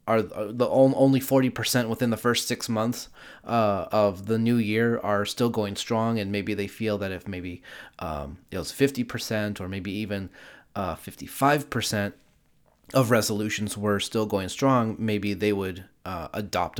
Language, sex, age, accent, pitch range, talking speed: English, male, 30-49, American, 100-120 Hz, 160 wpm